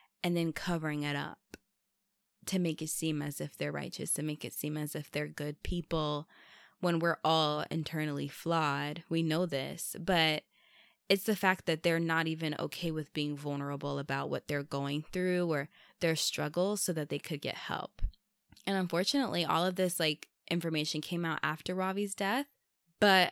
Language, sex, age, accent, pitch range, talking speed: English, female, 20-39, American, 150-185 Hz, 180 wpm